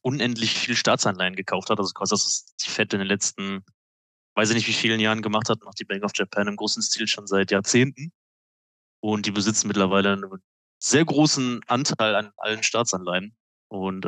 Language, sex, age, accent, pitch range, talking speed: German, male, 20-39, German, 95-115 Hz, 190 wpm